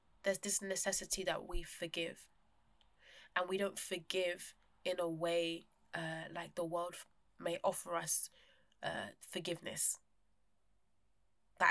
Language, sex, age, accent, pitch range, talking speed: English, female, 20-39, British, 170-195 Hz, 120 wpm